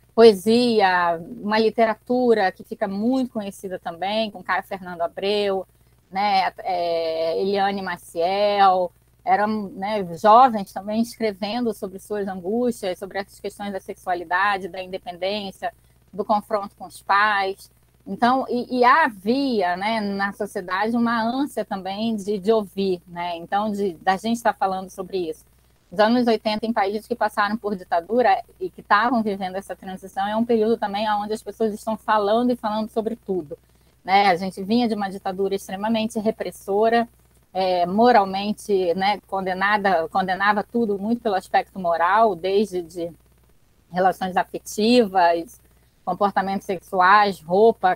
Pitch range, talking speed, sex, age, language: 185-220 Hz, 140 wpm, female, 20-39, Portuguese